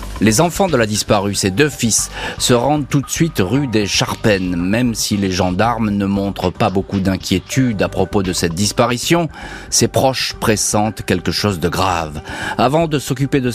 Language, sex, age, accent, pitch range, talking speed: French, male, 40-59, French, 95-135 Hz, 180 wpm